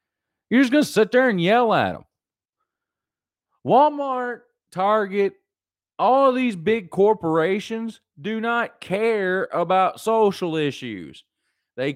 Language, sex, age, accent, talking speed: English, male, 30-49, American, 120 wpm